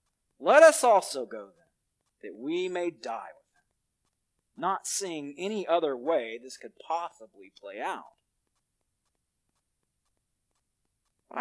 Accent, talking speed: American, 115 wpm